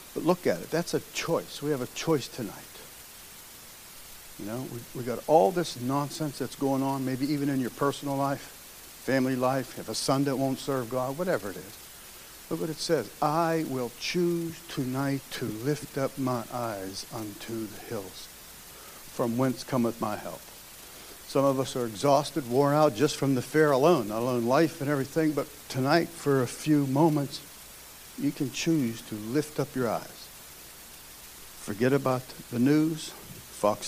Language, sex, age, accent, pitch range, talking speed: English, male, 60-79, American, 120-145 Hz, 170 wpm